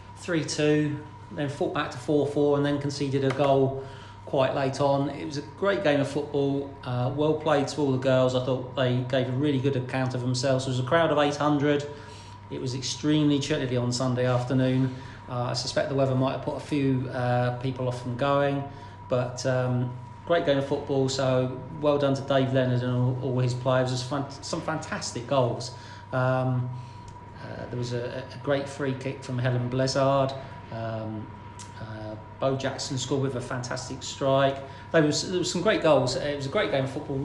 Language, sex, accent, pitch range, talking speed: English, male, British, 125-140 Hz, 195 wpm